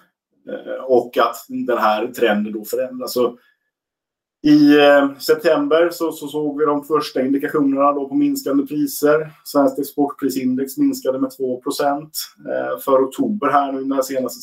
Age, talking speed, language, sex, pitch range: 30-49, 130 wpm, Swedish, male, 120-145 Hz